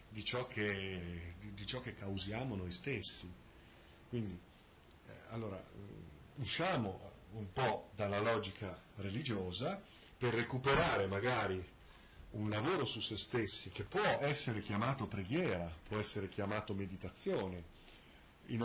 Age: 40-59